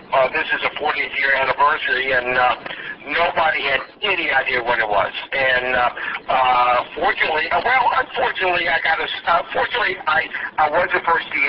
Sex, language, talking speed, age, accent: male, English, 170 wpm, 50-69, American